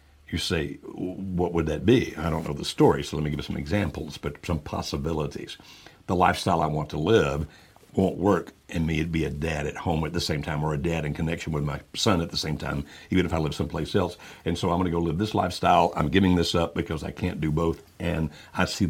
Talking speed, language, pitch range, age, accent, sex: 255 wpm, English, 75-90 Hz, 60-79, American, male